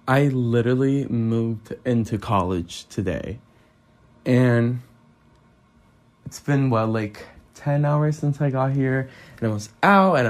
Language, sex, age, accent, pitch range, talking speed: English, male, 20-39, American, 110-130 Hz, 130 wpm